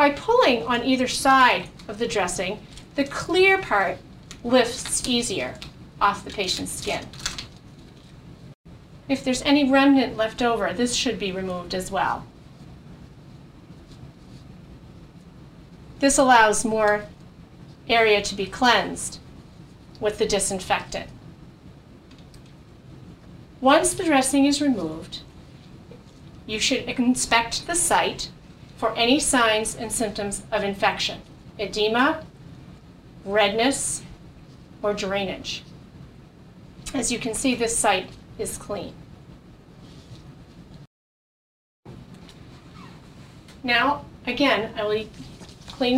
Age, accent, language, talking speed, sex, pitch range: 40-59, American, English, 95 wpm, female, 210-265 Hz